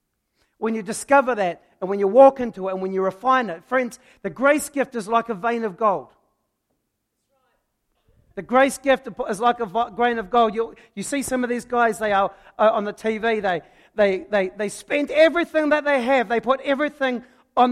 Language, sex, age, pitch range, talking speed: English, male, 40-59, 220-270 Hz, 205 wpm